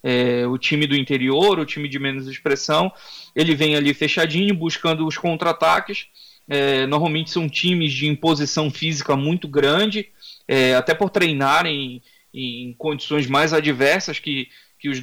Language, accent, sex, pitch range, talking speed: Portuguese, Brazilian, male, 140-180 Hz, 150 wpm